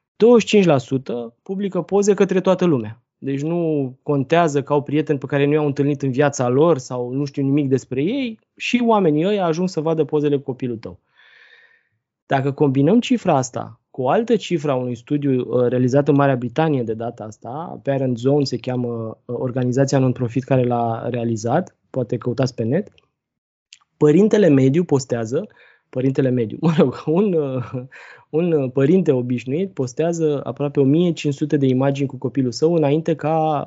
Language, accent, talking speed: Romanian, native, 155 wpm